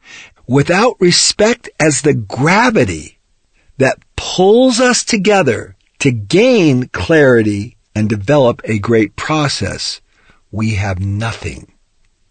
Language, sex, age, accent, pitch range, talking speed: English, male, 50-69, American, 110-165 Hz, 95 wpm